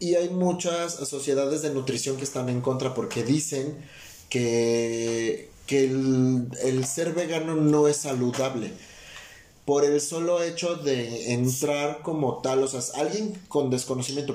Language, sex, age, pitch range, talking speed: Spanish, male, 30-49, 125-160 Hz, 140 wpm